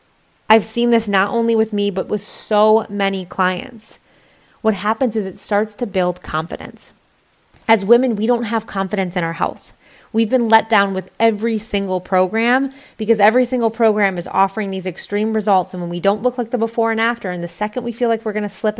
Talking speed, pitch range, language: 210 wpm, 195-235 Hz, English